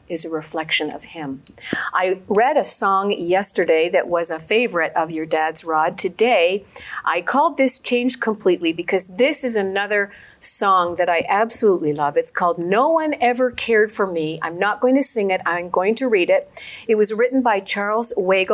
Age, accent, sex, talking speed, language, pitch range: 50-69, American, female, 190 wpm, English, 180-255 Hz